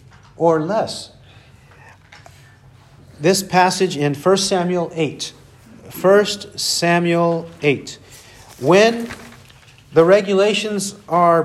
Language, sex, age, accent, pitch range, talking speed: English, male, 50-69, American, 130-180 Hz, 80 wpm